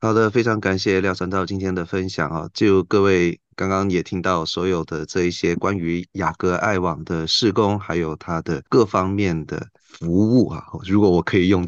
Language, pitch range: Chinese, 90-105 Hz